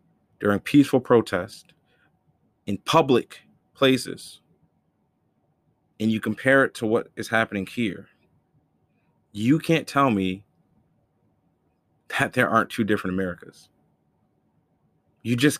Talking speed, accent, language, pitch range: 105 wpm, American, English, 95-120 Hz